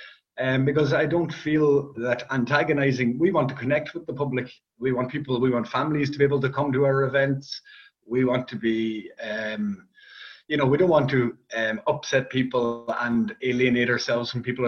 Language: English